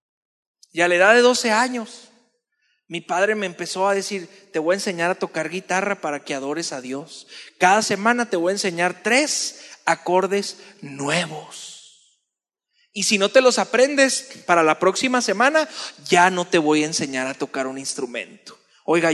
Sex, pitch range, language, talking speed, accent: male, 175-235 Hz, Spanish, 170 wpm, Mexican